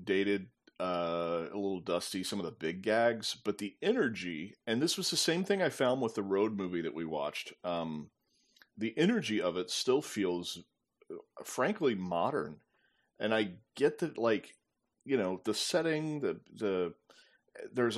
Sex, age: male, 40-59